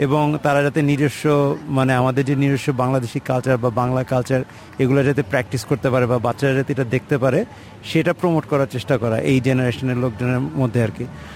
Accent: native